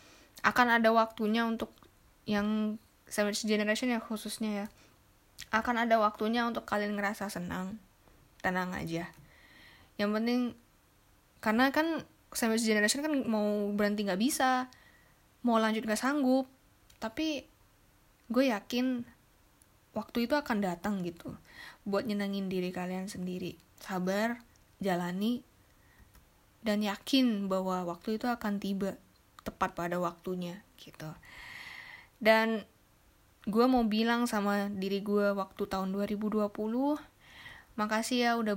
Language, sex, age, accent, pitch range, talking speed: Indonesian, female, 10-29, native, 195-235 Hz, 115 wpm